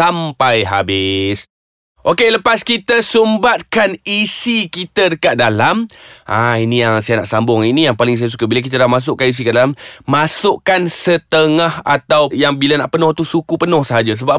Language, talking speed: Malay, 165 wpm